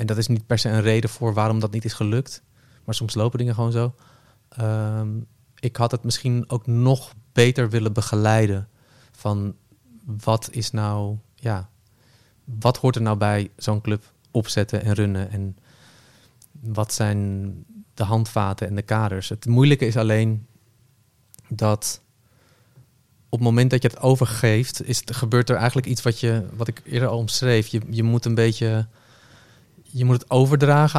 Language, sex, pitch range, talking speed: Dutch, male, 110-125 Hz, 160 wpm